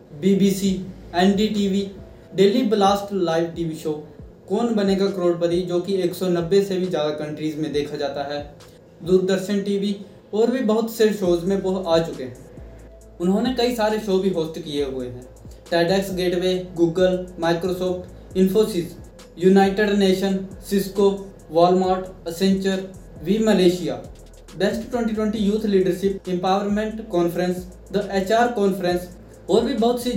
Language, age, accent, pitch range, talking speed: Hindi, 20-39, native, 170-205 Hz, 135 wpm